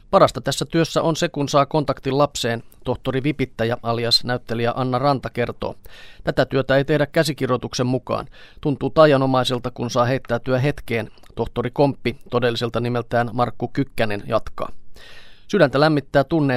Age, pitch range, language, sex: 30-49, 115-130 Hz, Finnish, male